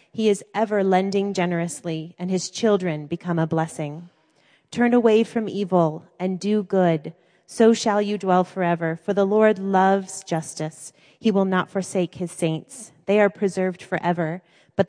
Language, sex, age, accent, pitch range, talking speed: English, female, 30-49, American, 165-195 Hz, 155 wpm